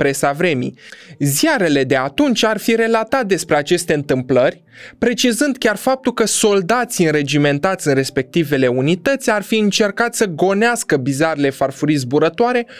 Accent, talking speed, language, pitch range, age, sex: native, 130 wpm, Romanian, 145-235 Hz, 20-39, male